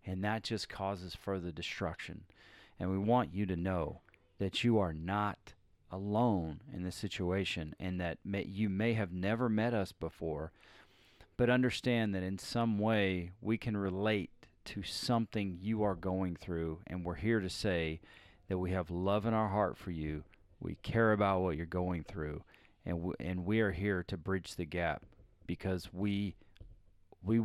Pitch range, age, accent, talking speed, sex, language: 90-105 Hz, 40-59, American, 175 wpm, male, English